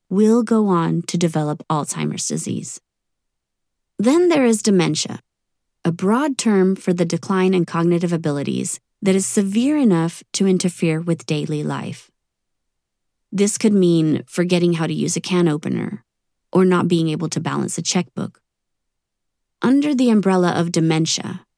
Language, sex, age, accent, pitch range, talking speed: English, female, 30-49, American, 165-205 Hz, 145 wpm